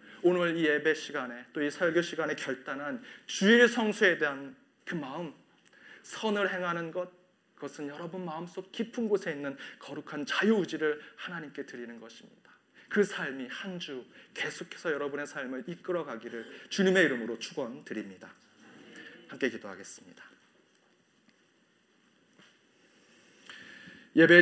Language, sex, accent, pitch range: Korean, male, native, 145-190 Hz